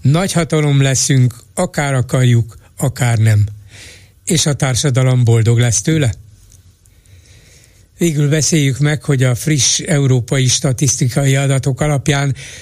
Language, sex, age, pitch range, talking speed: Hungarian, male, 60-79, 115-145 Hz, 110 wpm